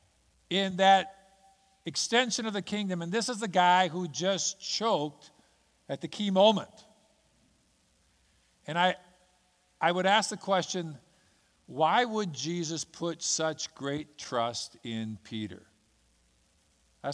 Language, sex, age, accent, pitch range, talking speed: English, male, 50-69, American, 140-190 Hz, 125 wpm